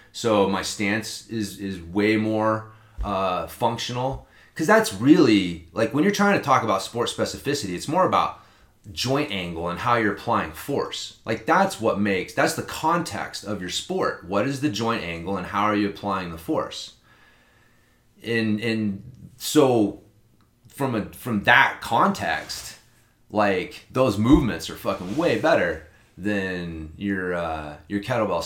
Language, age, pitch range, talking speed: English, 30-49, 95-120 Hz, 155 wpm